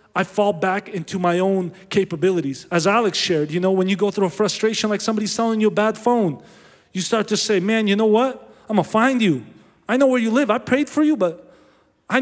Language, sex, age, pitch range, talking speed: English, male, 30-49, 145-205 Hz, 235 wpm